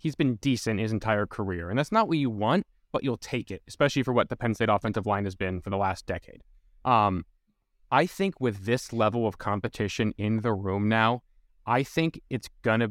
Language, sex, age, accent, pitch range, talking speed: English, male, 20-39, American, 105-130 Hz, 215 wpm